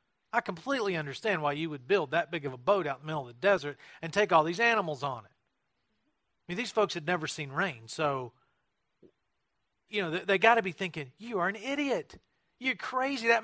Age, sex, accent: 40-59, male, American